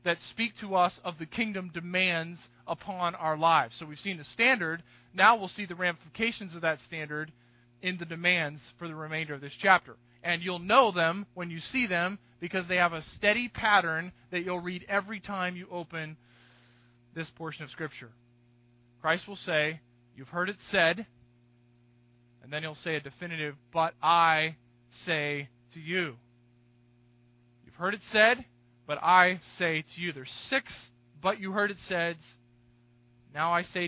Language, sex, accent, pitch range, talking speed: English, male, American, 120-180 Hz, 170 wpm